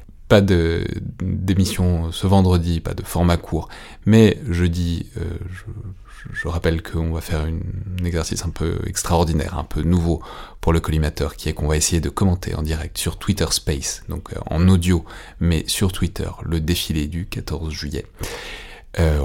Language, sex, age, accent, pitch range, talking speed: French, male, 30-49, French, 80-95 Hz, 170 wpm